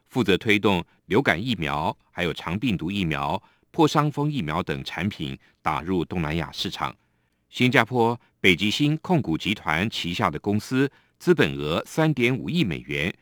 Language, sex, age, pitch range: Chinese, male, 50-69, 85-130 Hz